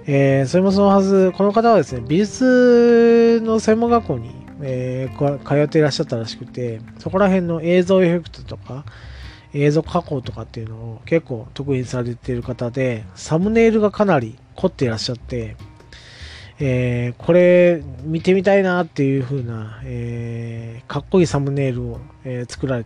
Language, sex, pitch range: Japanese, male, 120-165 Hz